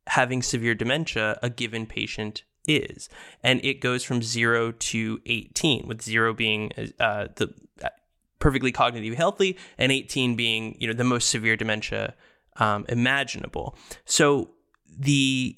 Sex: male